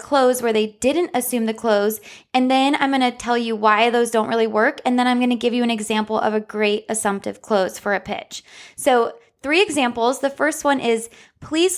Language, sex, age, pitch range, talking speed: English, female, 10-29, 225-285 Hz, 225 wpm